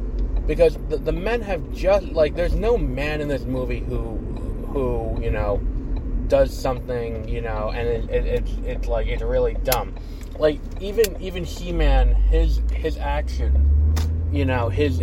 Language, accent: English, American